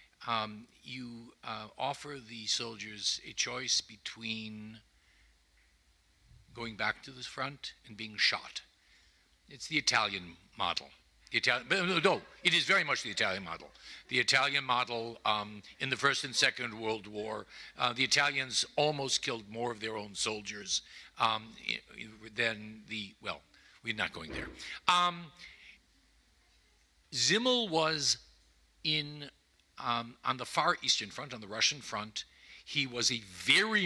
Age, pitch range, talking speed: 60-79, 110-140 Hz, 135 wpm